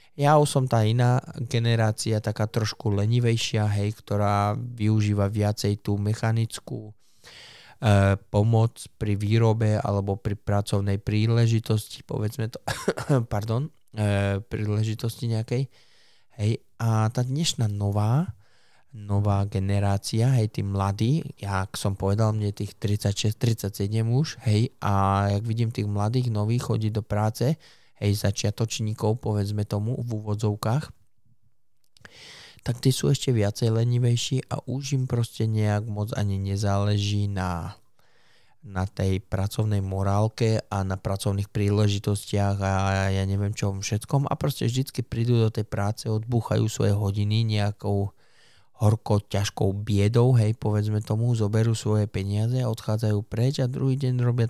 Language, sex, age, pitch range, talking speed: Slovak, male, 20-39, 100-120 Hz, 130 wpm